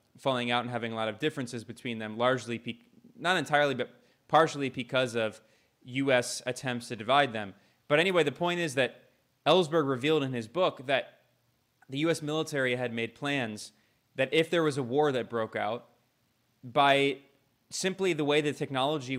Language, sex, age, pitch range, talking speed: English, male, 20-39, 120-145 Hz, 170 wpm